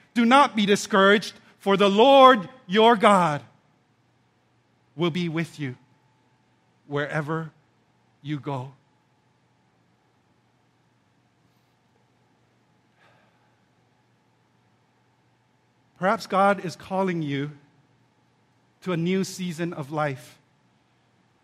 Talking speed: 75 wpm